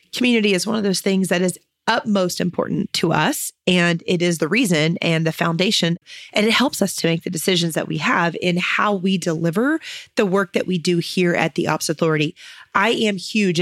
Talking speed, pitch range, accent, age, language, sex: 210 wpm, 170-210 Hz, American, 30-49, English, female